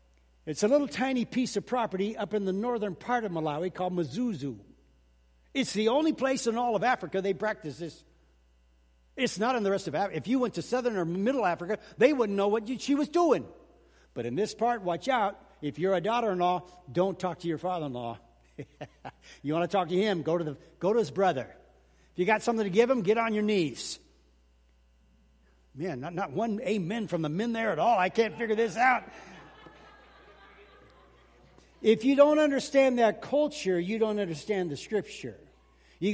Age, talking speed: 60-79, 195 wpm